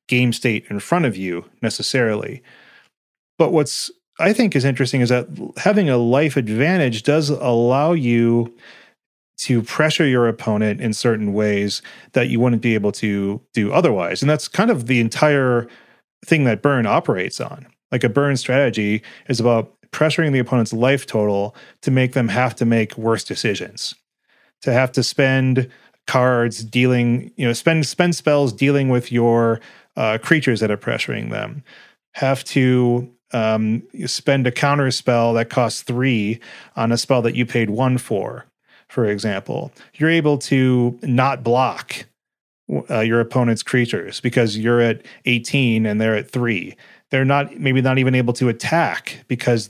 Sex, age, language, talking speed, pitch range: male, 30-49, English, 160 wpm, 115-135 Hz